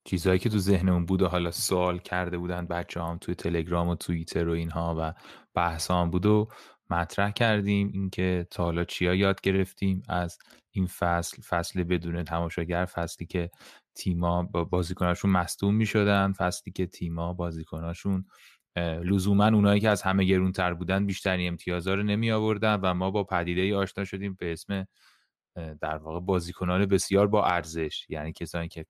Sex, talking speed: male, 160 wpm